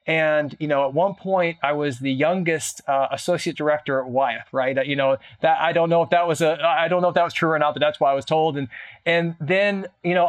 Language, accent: English, American